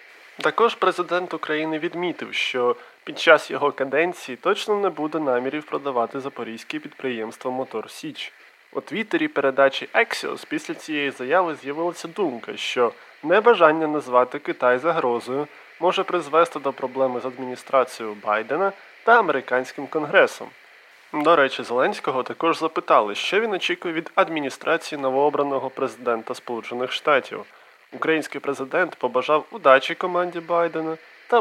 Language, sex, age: Ukrainian, male, 20-39